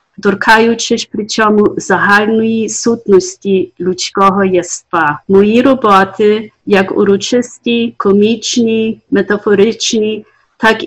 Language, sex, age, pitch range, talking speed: Ukrainian, female, 40-59, 195-225 Hz, 75 wpm